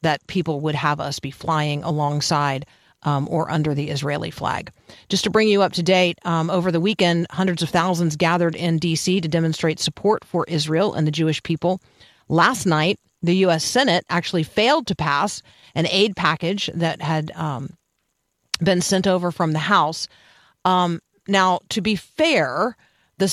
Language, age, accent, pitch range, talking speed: English, 40-59, American, 155-185 Hz, 170 wpm